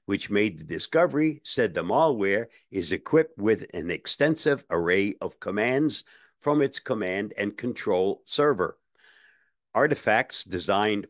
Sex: male